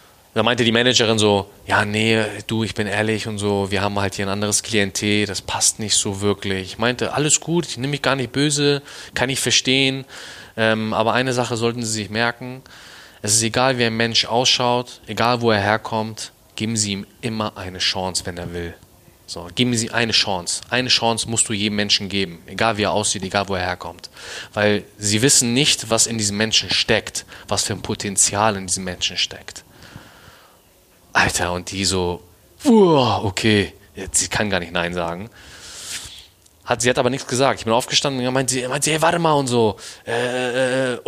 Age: 20-39